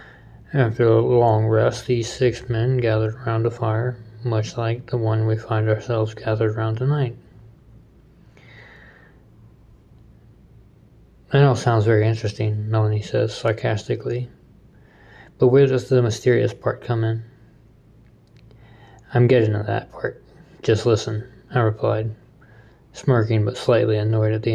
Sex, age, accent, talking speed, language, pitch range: male, 20-39, American, 125 wpm, English, 110-120 Hz